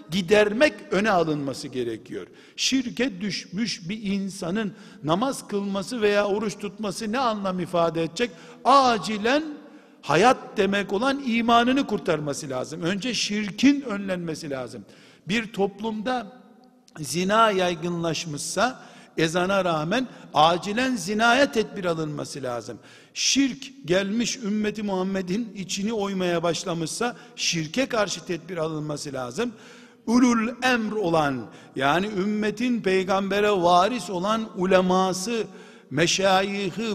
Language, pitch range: Turkish, 185-240 Hz